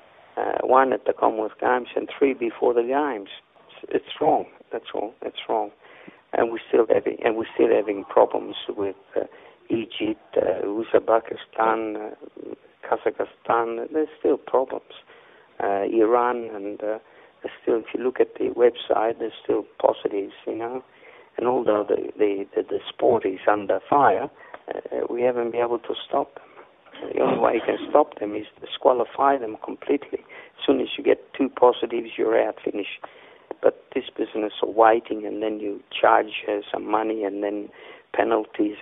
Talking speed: 160 wpm